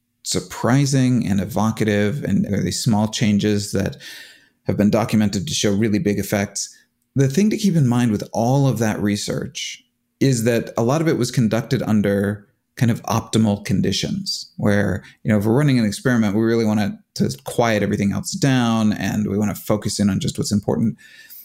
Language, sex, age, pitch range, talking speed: English, male, 30-49, 105-125 Hz, 195 wpm